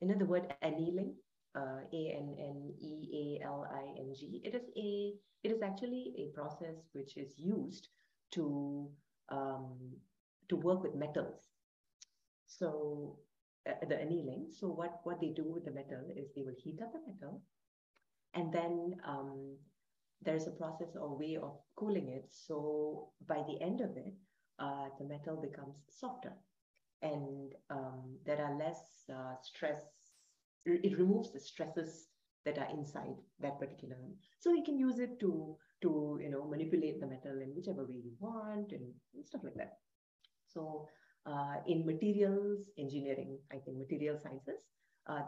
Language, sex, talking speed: English, female, 160 wpm